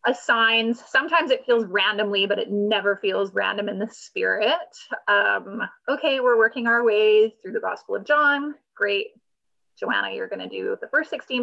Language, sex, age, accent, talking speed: English, female, 20-39, American, 175 wpm